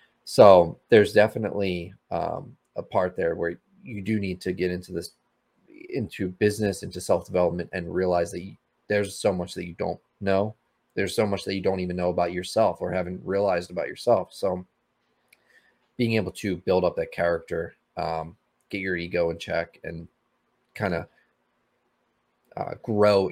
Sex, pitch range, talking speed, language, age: male, 90-100 Hz, 165 wpm, English, 30-49